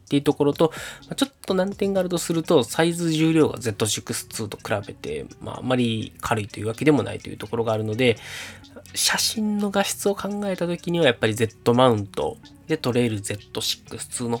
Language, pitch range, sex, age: Japanese, 105-145 Hz, male, 20-39